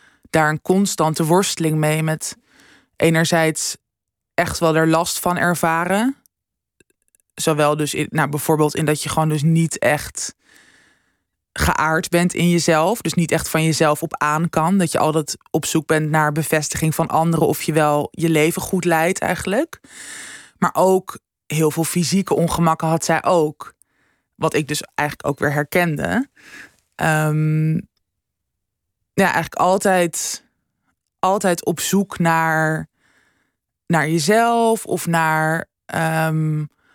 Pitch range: 155-180 Hz